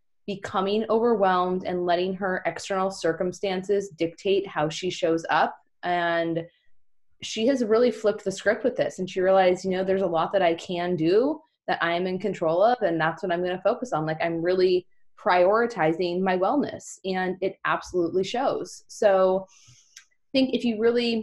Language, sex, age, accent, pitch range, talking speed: English, female, 20-39, American, 180-220 Hz, 180 wpm